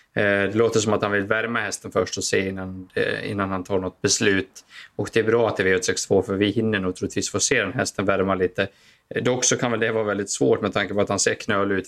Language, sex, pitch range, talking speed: Swedish, male, 100-115 Hz, 265 wpm